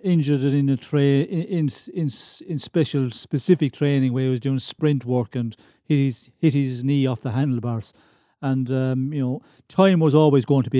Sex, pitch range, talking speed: male, 130-150 Hz, 200 wpm